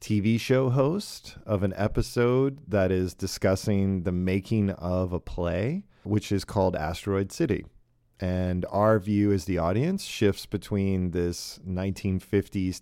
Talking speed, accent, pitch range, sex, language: 135 wpm, American, 90-110 Hz, male, English